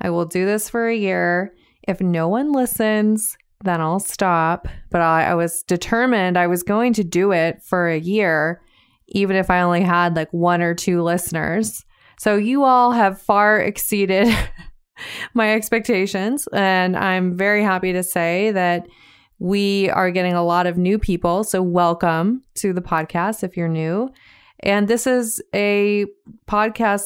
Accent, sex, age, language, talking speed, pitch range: American, female, 20-39, English, 165 wpm, 175-210 Hz